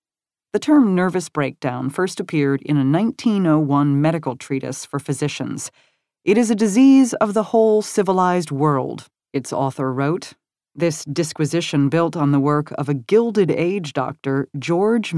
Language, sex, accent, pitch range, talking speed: English, female, American, 140-185 Hz, 145 wpm